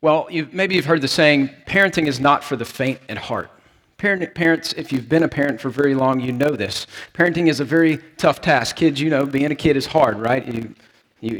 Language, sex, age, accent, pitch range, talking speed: English, male, 40-59, American, 140-170 Hz, 230 wpm